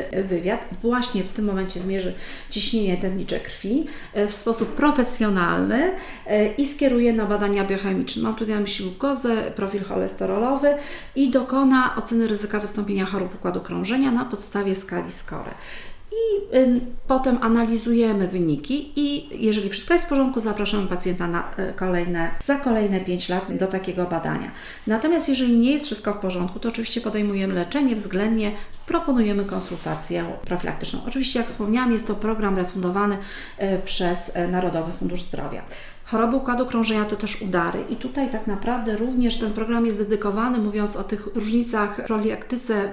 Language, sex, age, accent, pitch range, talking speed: Polish, female, 40-59, native, 190-235 Hz, 145 wpm